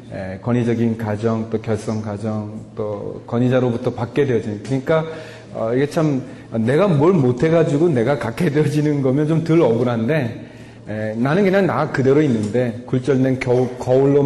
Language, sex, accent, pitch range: Korean, male, native, 115-150 Hz